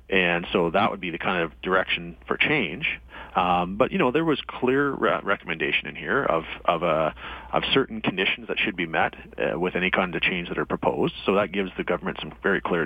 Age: 40-59